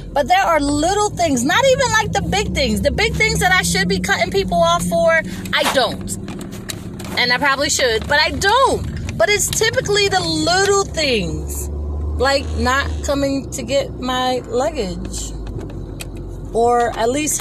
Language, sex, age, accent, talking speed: English, female, 30-49, American, 160 wpm